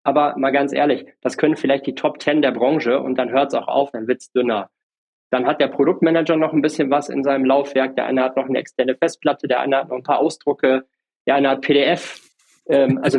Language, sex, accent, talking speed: English, male, German, 235 wpm